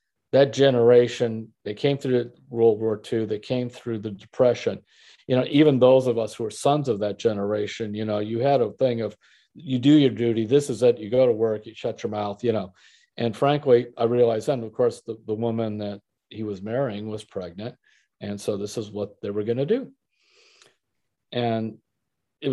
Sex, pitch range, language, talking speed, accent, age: male, 110-130 Hz, English, 200 wpm, American, 50-69